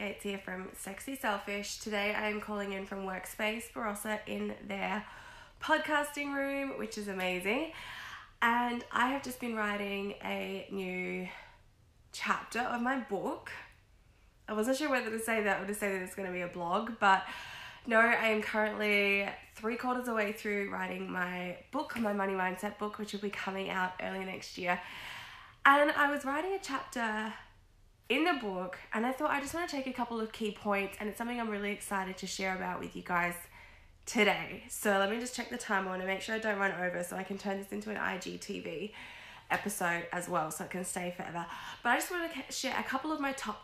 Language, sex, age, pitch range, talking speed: English, female, 20-39, 190-235 Hz, 205 wpm